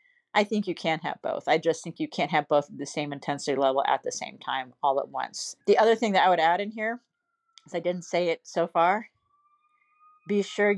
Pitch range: 155-195 Hz